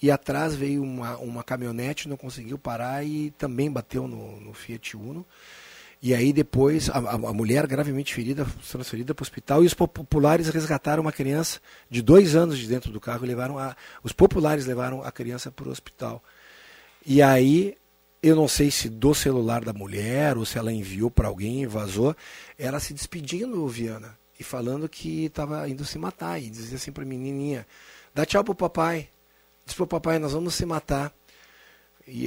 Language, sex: Portuguese, male